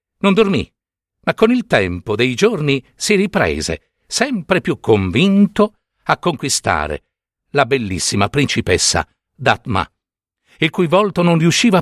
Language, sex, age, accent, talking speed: Italian, male, 60-79, native, 120 wpm